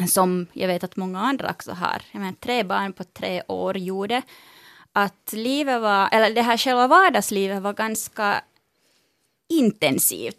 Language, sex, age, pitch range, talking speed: Finnish, female, 20-39, 180-255 Hz, 125 wpm